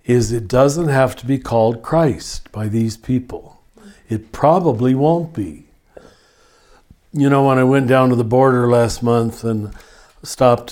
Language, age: English, 60-79